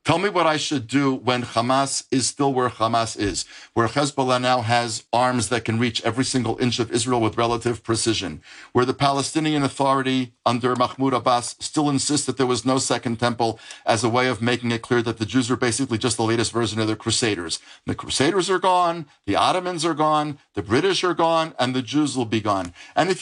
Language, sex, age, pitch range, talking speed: English, male, 50-69, 120-165 Hz, 215 wpm